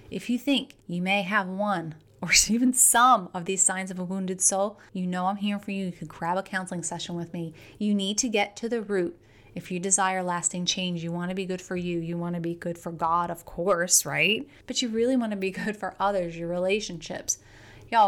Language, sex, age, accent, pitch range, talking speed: English, female, 30-49, American, 175-210 Hz, 240 wpm